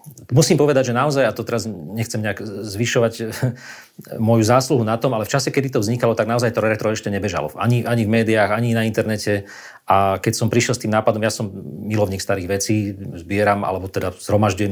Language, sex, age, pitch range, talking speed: Slovak, male, 40-59, 105-120 Hz, 200 wpm